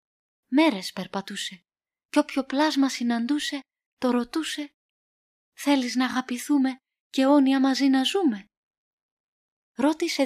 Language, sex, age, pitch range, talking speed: Greek, female, 20-39, 230-300 Hz, 100 wpm